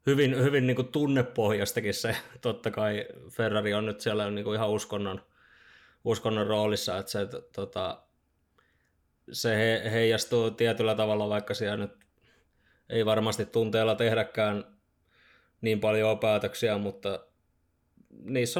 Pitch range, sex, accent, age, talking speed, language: 100-115 Hz, male, native, 20-39, 125 wpm, Finnish